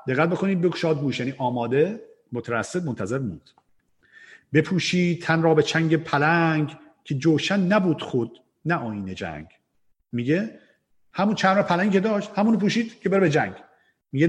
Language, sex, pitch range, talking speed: Persian, male, 125-170 Hz, 145 wpm